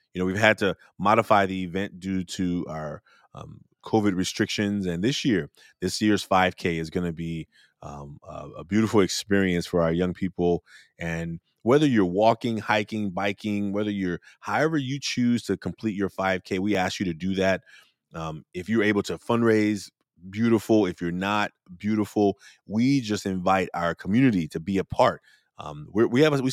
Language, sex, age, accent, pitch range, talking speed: English, male, 30-49, American, 90-110 Hz, 180 wpm